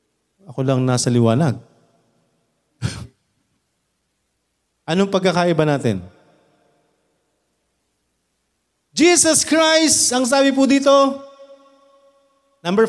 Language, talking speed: Filipino, 65 wpm